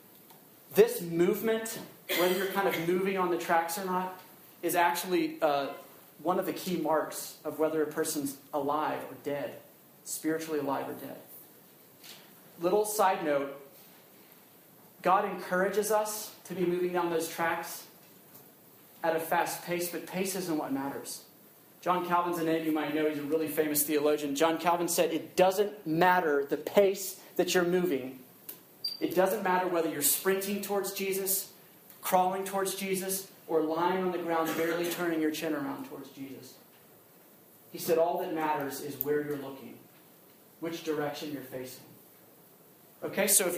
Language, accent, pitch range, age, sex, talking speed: English, American, 155-185 Hz, 40-59, male, 155 wpm